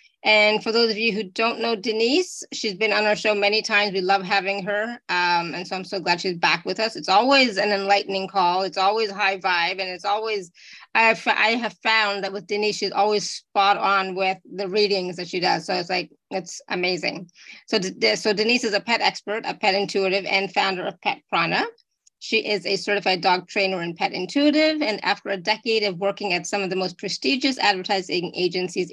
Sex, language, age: female, English, 30-49